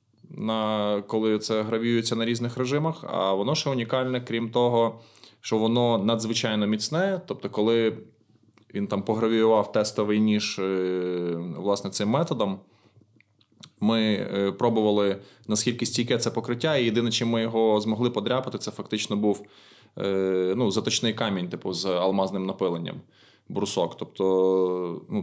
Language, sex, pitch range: Ukrainian, male, 100-115 Hz